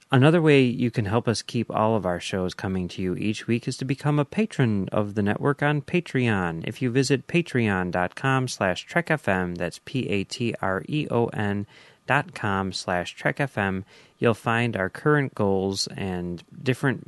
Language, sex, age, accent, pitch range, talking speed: English, male, 30-49, American, 100-135 Hz, 160 wpm